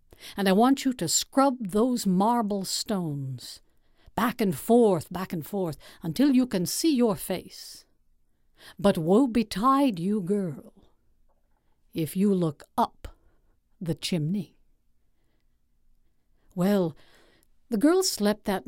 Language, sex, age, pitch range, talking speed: English, female, 60-79, 155-230 Hz, 120 wpm